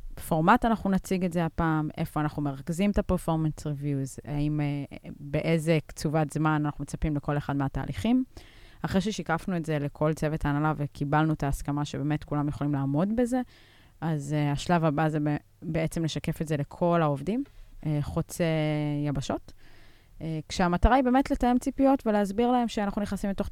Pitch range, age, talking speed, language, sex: 150-185 Hz, 20-39, 150 wpm, Hebrew, female